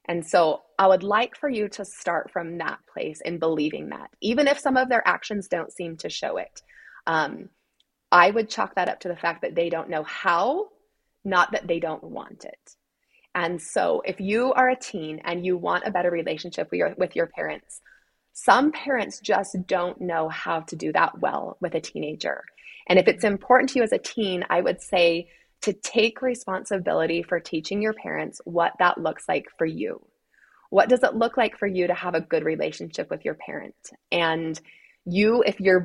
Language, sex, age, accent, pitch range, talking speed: English, female, 20-39, American, 170-230 Hz, 200 wpm